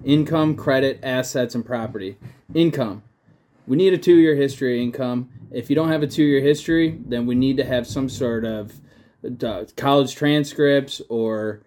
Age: 20-39